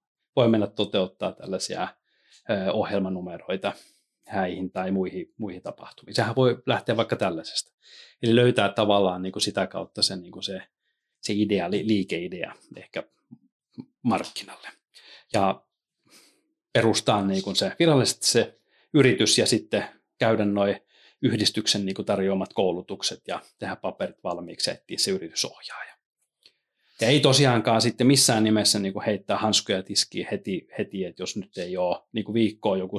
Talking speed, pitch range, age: 135 wpm, 95-120 Hz, 30-49